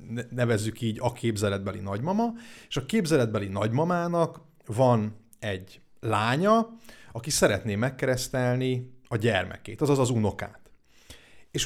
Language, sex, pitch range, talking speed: Hungarian, male, 105-140 Hz, 110 wpm